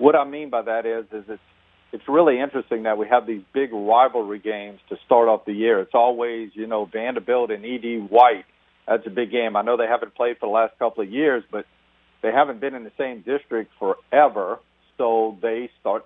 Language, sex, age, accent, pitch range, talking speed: English, male, 50-69, American, 110-150 Hz, 215 wpm